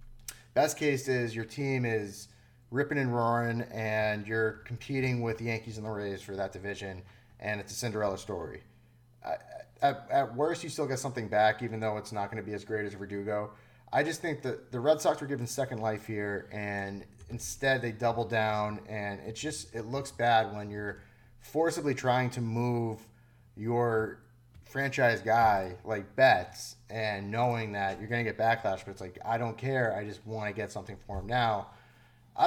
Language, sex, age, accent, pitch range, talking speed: English, male, 30-49, American, 105-130 Hz, 190 wpm